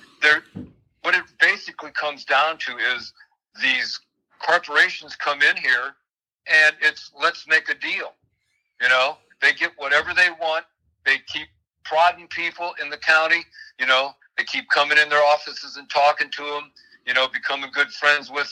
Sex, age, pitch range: male, 60-79, 135-170 Hz